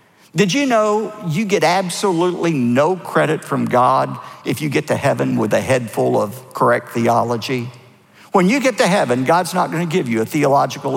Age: 50-69